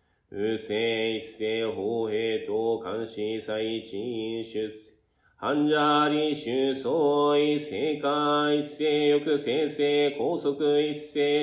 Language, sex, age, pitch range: Japanese, male, 40-59, 145-150 Hz